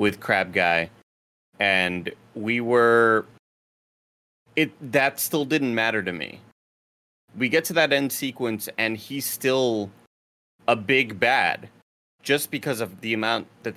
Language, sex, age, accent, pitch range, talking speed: English, male, 20-39, American, 100-120 Hz, 135 wpm